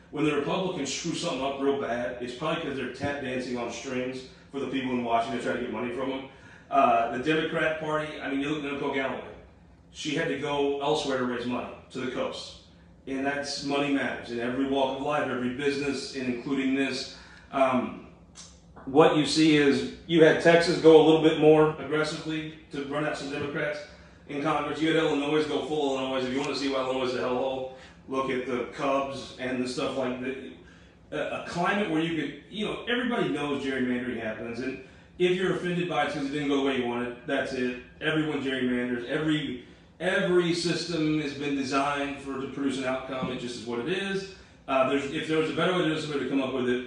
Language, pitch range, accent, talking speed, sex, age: English, 125-155 Hz, American, 220 wpm, male, 30-49